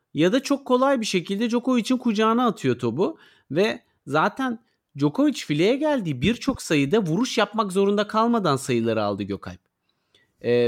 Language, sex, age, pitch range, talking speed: Turkish, male, 40-59, 140-225 Hz, 140 wpm